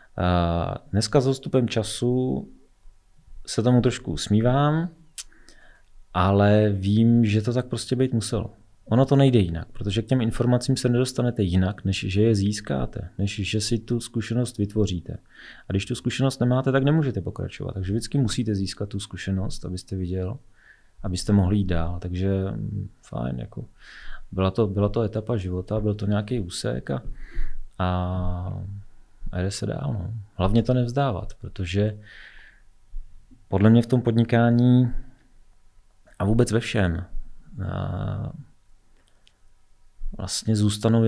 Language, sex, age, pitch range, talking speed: Czech, male, 30-49, 95-120 Hz, 135 wpm